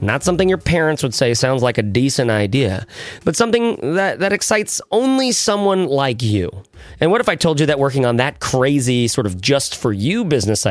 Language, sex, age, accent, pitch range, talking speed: English, male, 30-49, American, 105-160 Hz, 195 wpm